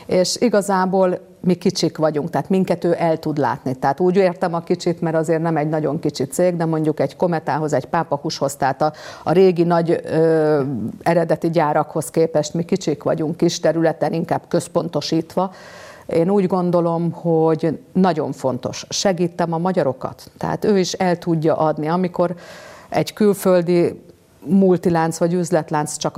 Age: 50-69